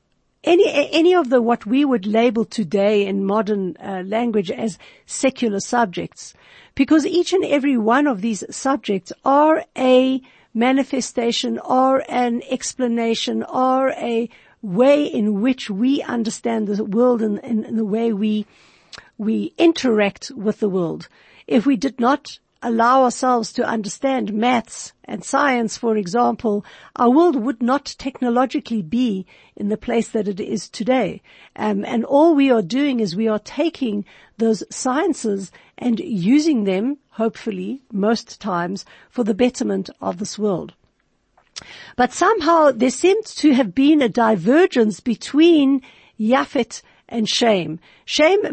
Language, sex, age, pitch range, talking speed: English, female, 50-69, 215-270 Hz, 140 wpm